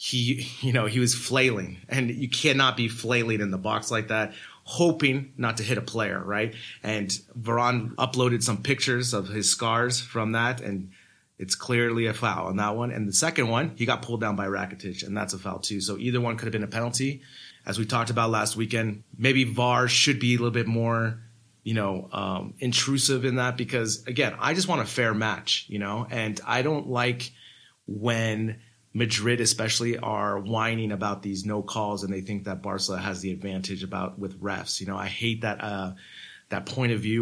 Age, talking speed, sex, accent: 30-49, 205 wpm, male, American